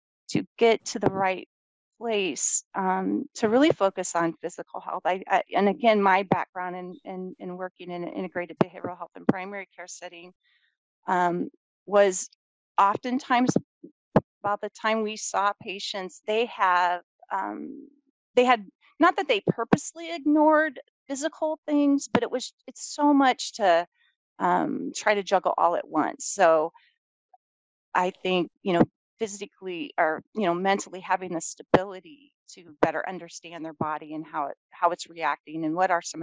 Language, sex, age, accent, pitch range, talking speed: English, female, 30-49, American, 180-255 Hz, 155 wpm